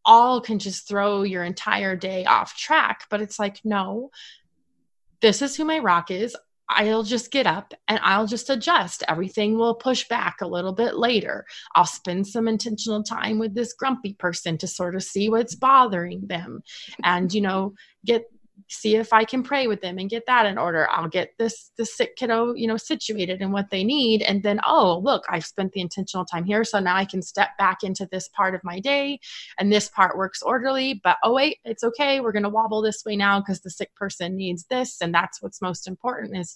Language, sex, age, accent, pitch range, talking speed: English, female, 20-39, American, 190-230 Hz, 215 wpm